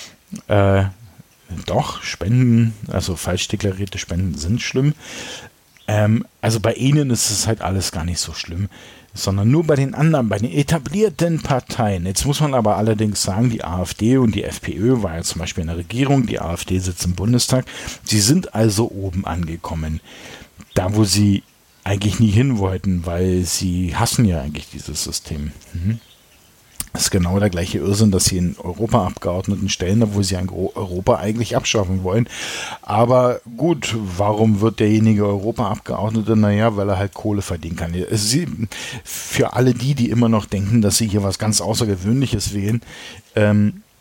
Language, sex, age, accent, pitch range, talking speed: German, male, 50-69, German, 95-115 Hz, 160 wpm